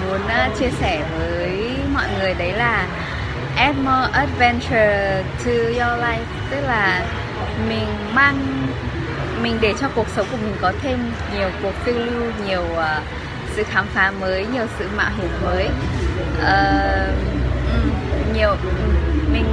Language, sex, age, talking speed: Vietnamese, female, 20-39, 140 wpm